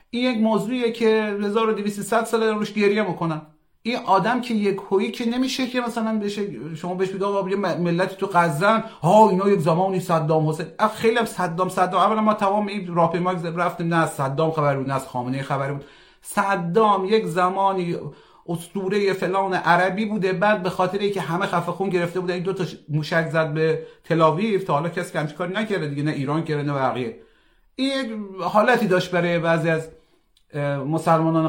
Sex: male